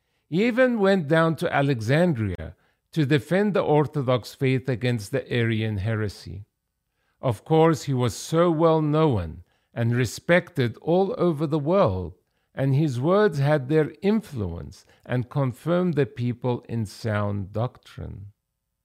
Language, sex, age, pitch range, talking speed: English, male, 50-69, 115-180 Hz, 125 wpm